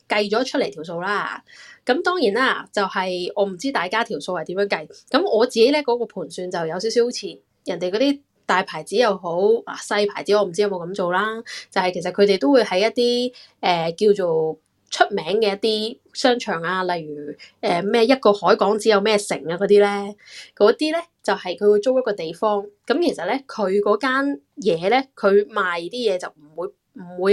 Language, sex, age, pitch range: Chinese, female, 10-29, 185-225 Hz